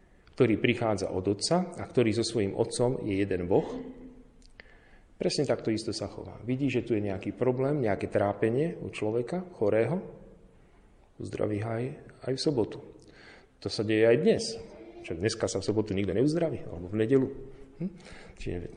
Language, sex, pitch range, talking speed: Slovak, male, 105-155 Hz, 155 wpm